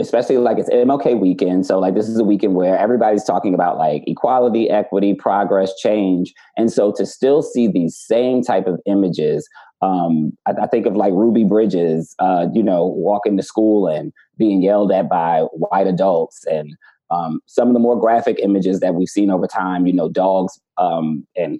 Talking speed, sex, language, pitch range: 190 wpm, male, English, 95-115 Hz